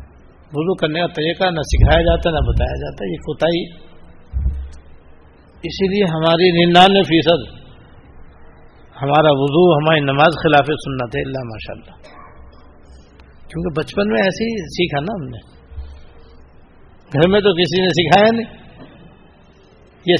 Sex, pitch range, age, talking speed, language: male, 130-175 Hz, 60-79, 110 wpm, Persian